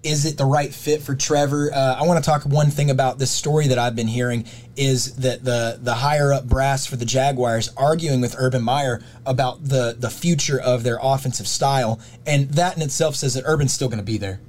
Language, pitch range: English, 125-150 Hz